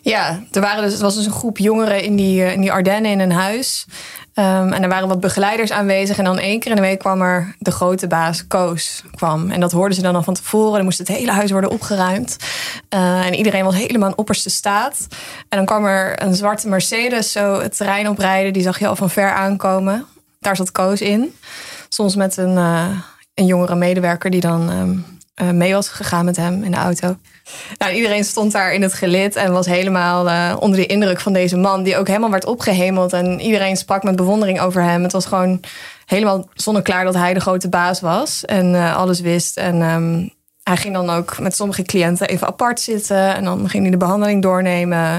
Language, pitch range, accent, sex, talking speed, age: Dutch, 180-205 Hz, Dutch, female, 220 wpm, 20-39